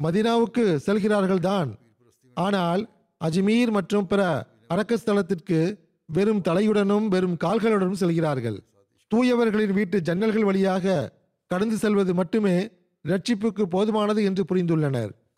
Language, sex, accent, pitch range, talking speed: Tamil, male, native, 160-210 Hz, 95 wpm